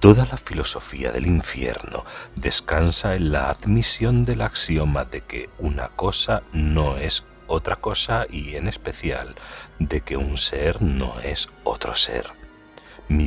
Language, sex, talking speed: Spanish, male, 140 wpm